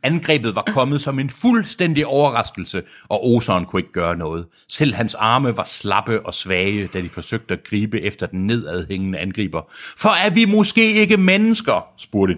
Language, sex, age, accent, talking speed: Danish, male, 60-79, native, 175 wpm